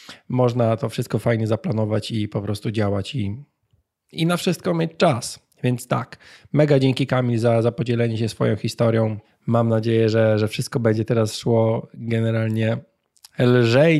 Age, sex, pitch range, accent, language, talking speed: 20-39, male, 115-130 Hz, native, Polish, 155 wpm